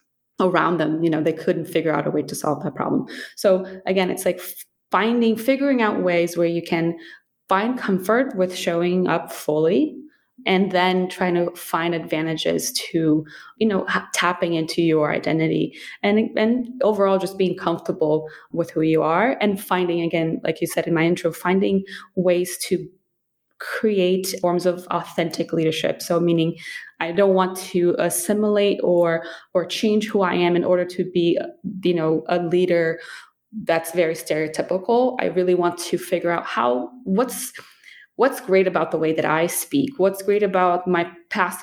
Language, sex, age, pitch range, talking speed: English, female, 20-39, 170-190 Hz, 165 wpm